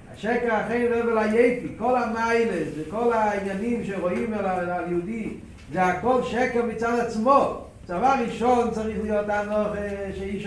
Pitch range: 190-235 Hz